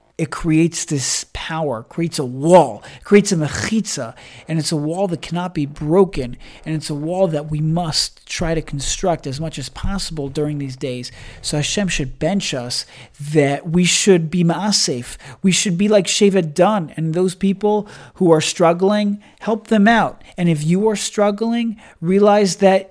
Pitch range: 145-185 Hz